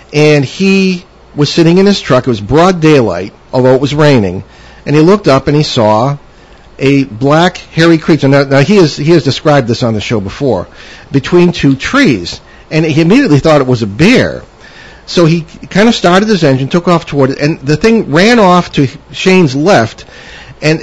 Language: English